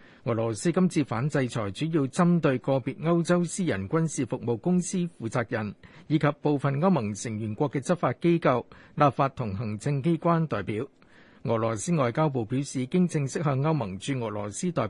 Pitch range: 120-165 Hz